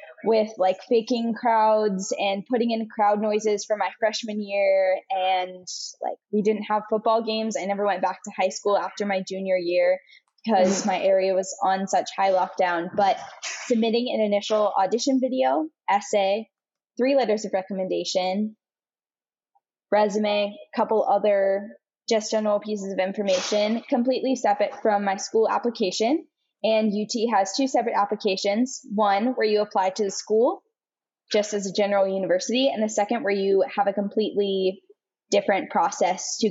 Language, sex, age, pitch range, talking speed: English, female, 10-29, 195-230 Hz, 155 wpm